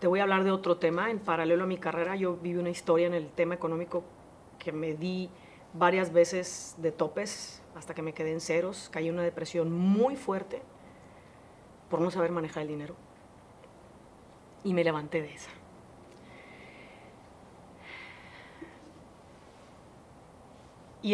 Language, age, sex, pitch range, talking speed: Spanish, 30-49, female, 165-215 Hz, 140 wpm